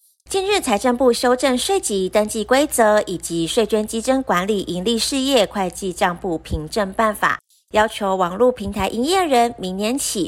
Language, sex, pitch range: Chinese, female, 195-260 Hz